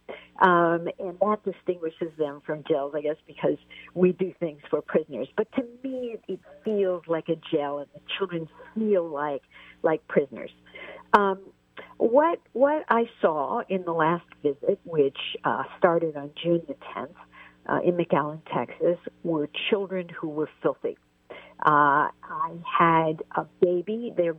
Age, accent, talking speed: 60-79, American, 150 wpm